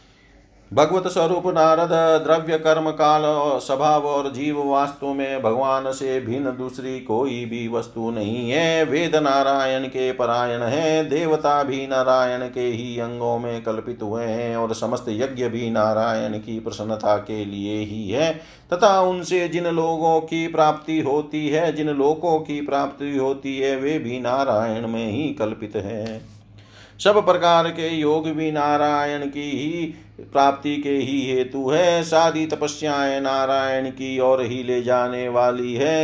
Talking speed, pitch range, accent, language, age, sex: 150 wpm, 115-150 Hz, native, Hindi, 50-69, male